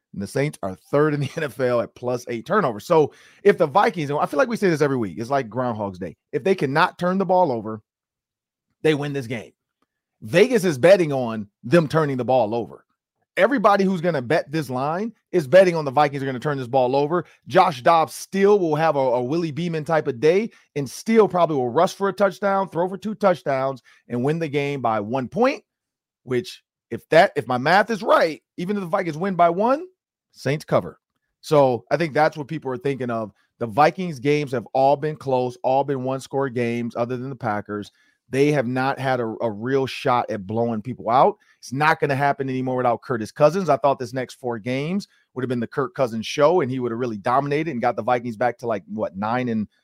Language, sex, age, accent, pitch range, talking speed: English, male, 30-49, American, 125-175 Hz, 230 wpm